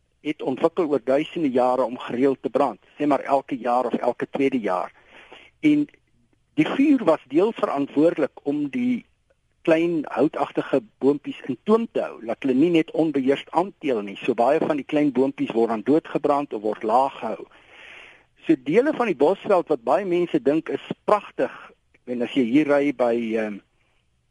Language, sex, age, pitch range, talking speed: Dutch, male, 50-69, 130-195 Hz, 170 wpm